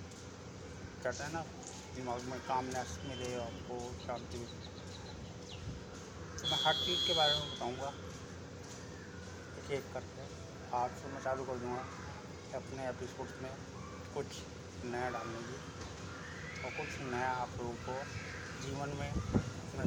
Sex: male